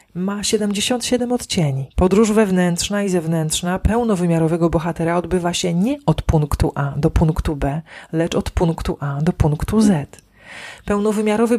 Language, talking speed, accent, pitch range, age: Polish, 135 wpm, native, 150-205 Hz, 40-59